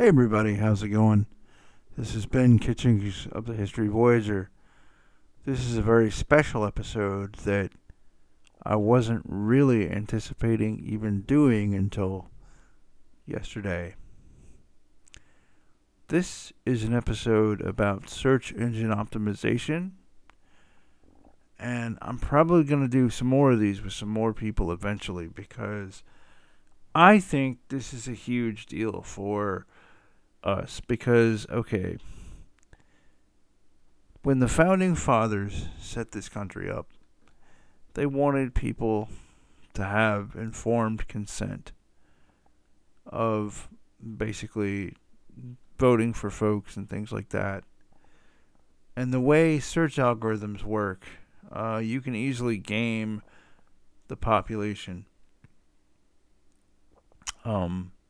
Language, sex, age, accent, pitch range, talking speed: English, male, 50-69, American, 100-120 Hz, 105 wpm